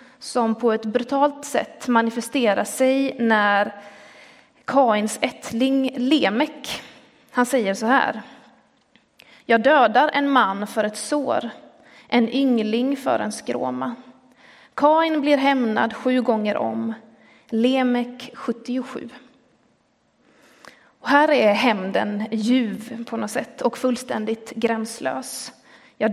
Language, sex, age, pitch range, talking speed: Swedish, female, 30-49, 225-270 Hz, 110 wpm